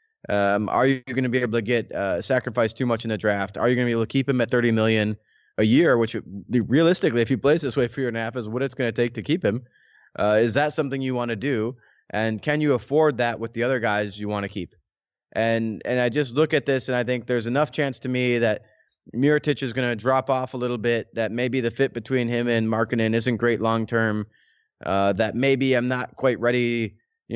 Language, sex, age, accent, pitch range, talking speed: English, male, 20-39, American, 110-130 Hz, 240 wpm